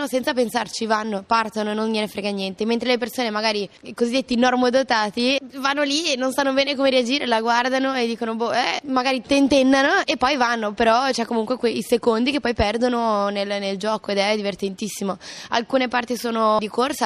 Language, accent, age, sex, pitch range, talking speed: Italian, native, 20-39, female, 205-255 Hz, 185 wpm